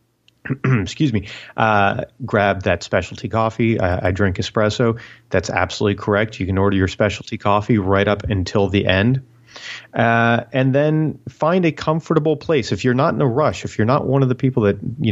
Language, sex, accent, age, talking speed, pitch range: English, male, American, 30-49, 185 wpm, 100-130 Hz